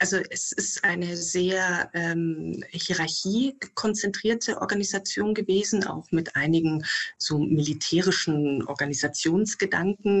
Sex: female